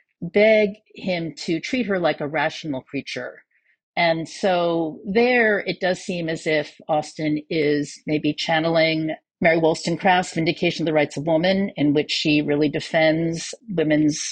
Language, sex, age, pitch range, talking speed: English, female, 50-69, 155-205 Hz, 145 wpm